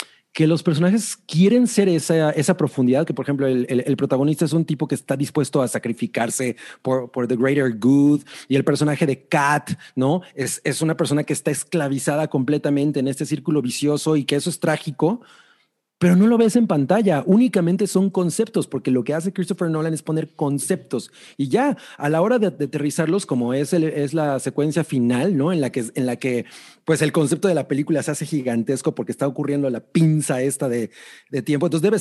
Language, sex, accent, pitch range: Spanish, male, Mexican, 135-175 Hz